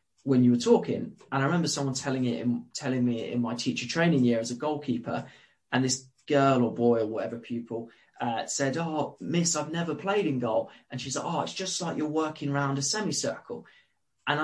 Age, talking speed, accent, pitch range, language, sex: 20-39, 210 wpm, British, 120-145 Hz, English, male